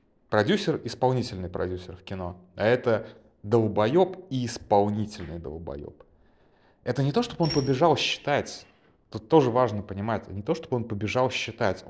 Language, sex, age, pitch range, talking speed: Russian, male, 20-39, 95-120 Hz, 140 wpm